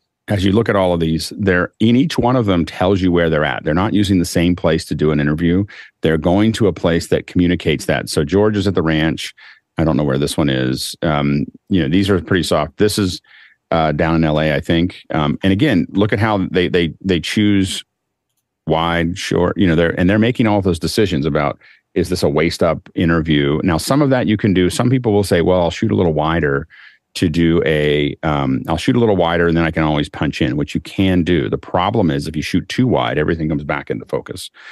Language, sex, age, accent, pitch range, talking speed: English, male, 40-59, American, 80-100 Hz, 245 wpm